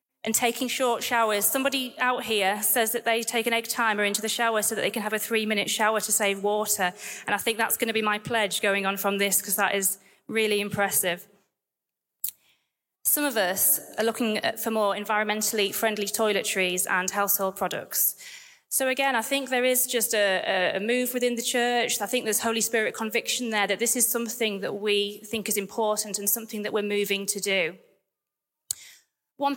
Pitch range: 205-250 Hz